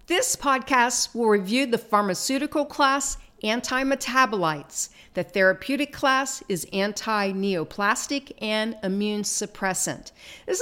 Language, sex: English, female